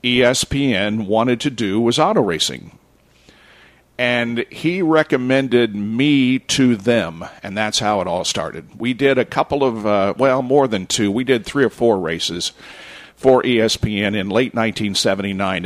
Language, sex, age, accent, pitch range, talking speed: English, male, 50-69, American, 95-115 Hz, 155 wpm